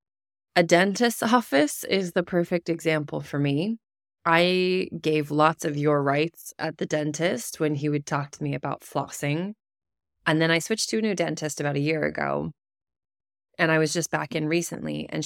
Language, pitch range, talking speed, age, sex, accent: English, 150-180 Hz, 180 wpm, 20-39, female, American